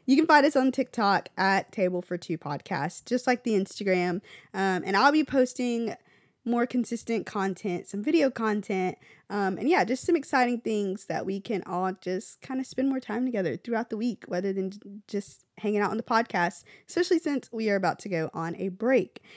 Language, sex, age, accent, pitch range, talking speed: English, female, 20-39, American, 190-250 Hz, 200 wpm